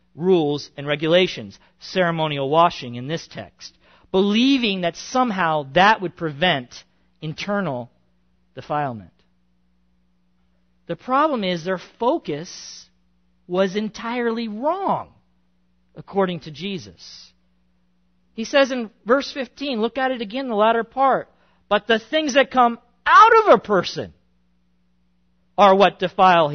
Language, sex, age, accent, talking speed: English, male, 50-69, American, 115 wpm